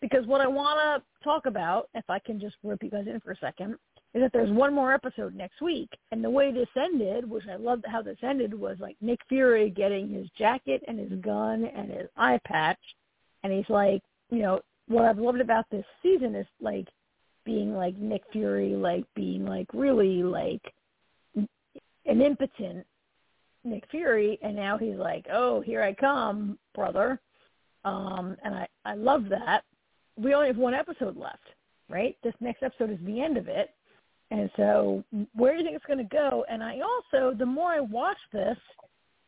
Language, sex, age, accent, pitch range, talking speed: English, female, 50-69, American, 205-270 Hz, 190 wpm